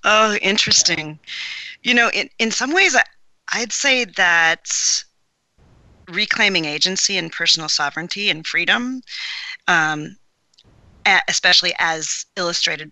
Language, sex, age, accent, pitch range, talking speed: English, female, 40-59, American, 160-210 Hz, 105 wpm